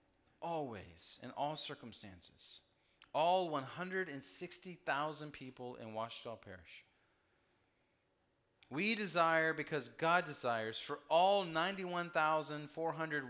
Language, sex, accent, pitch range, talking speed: English, male, American, 130-170 Hz, 80 wpm